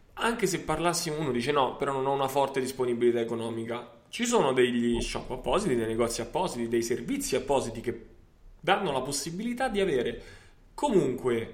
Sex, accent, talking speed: male, native, 160 wpm